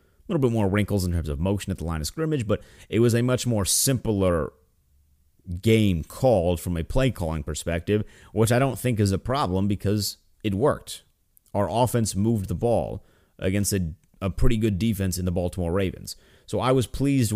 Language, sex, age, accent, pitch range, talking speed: English, male, 30-49, American, 85-110 Hz, 195 wpm